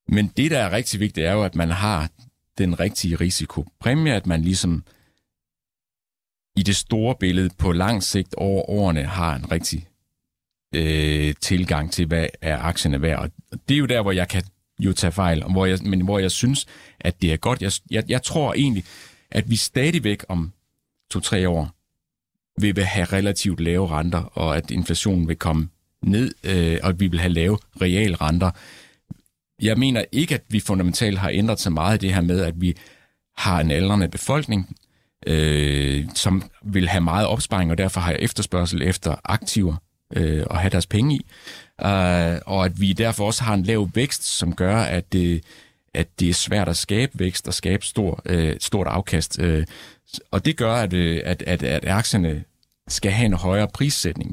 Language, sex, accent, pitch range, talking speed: Danish, male, native, 85-105 Hz, 185 wpm